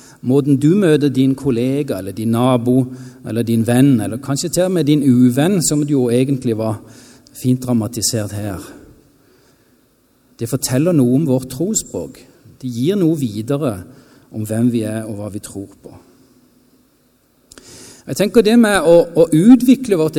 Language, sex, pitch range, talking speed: English, male, 125-155 Hz, 150 wpm